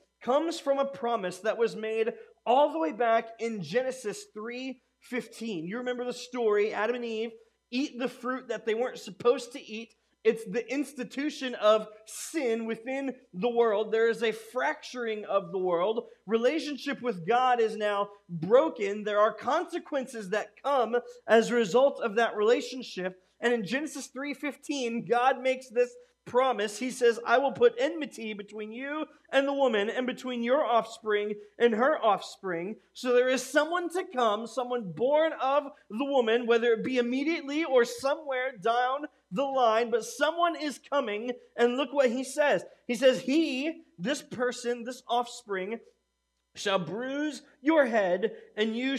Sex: male